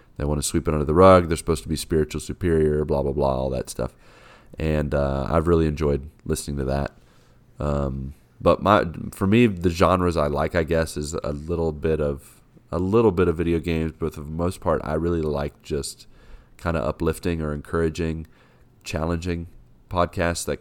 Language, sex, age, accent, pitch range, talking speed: English, male, 30-49, American, 75-90 Hz, 195 wpm